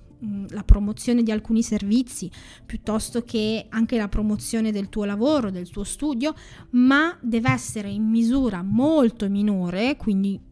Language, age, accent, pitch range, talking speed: Italian, 20-39, native, 200-240 Hz, 135 wpm